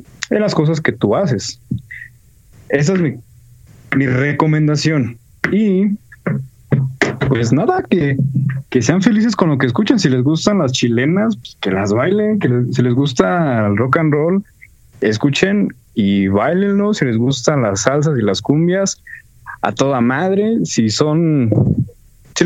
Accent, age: Mexican, 30-49